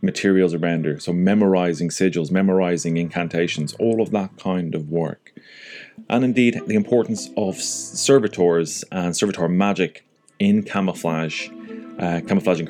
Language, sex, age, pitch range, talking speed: English, male, 30-49, 80-105 Hz, 130 wpm